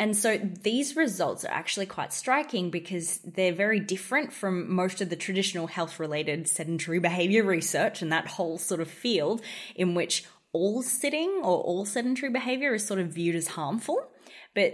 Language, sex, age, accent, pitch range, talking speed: English, female, 20-39, Australian, 170-225 Hz, 170 wpm